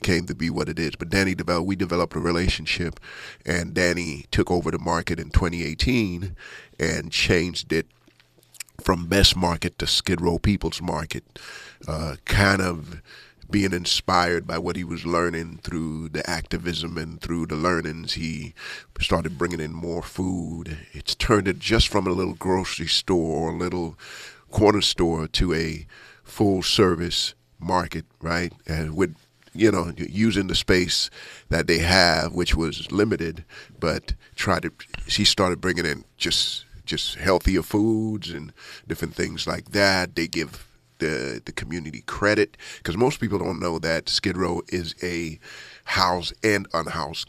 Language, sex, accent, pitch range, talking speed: English, male, American, 80-90 Hz, 155 wpm